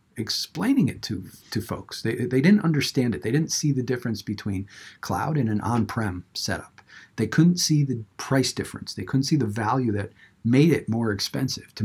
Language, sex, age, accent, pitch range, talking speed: English, male, 50-69, American, 105-135 Hz, 200 wpm